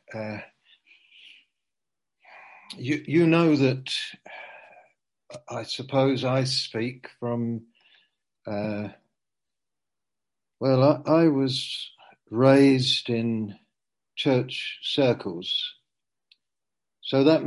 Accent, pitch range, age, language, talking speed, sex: British, 115-135 Hz, 60-79, English, 70 wpm, male